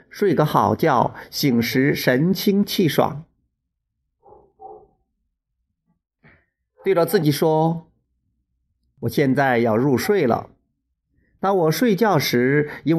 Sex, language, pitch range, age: male, Chinese, 130-205 Hz, 50-69